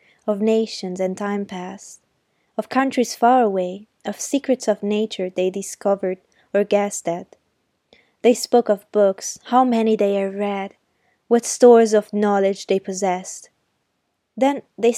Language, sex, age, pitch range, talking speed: Italian, female, 20-39, 190-230 Hz, 140 wpm